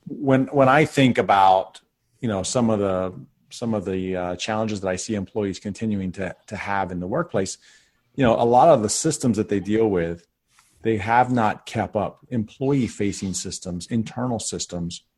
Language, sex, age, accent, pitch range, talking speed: English, male, 40-59, American, 100-125 Hz, 185 wpm